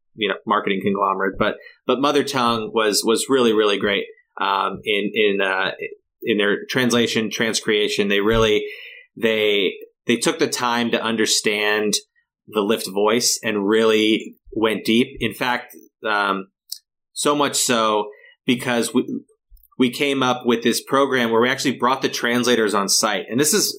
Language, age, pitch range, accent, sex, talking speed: English, 30-49, 110-140 Hz, American, male, 155 wpm